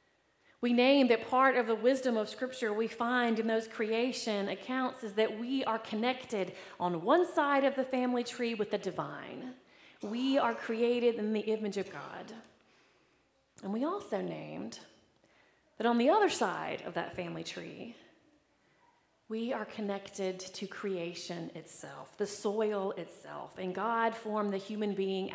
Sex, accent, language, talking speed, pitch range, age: female, American, English, 155 wpm, 195-240 Hz, 30-49